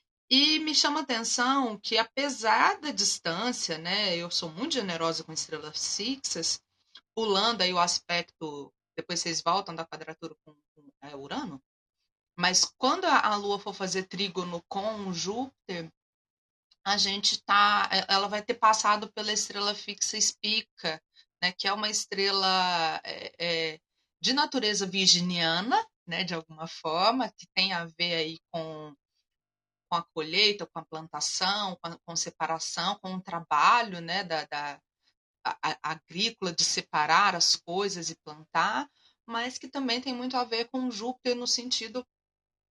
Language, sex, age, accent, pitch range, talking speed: Portuguese, female, 30-49, Brazilian, 165-220 Hz, 150 wpm